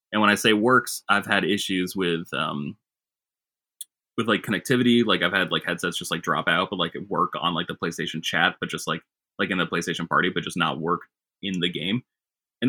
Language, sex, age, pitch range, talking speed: English, male, 20-39, 90-110 Hz, 220 wpm